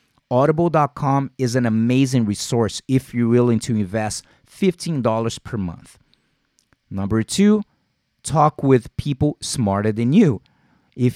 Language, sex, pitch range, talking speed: English, male, 115-145 Hz, 120 wpm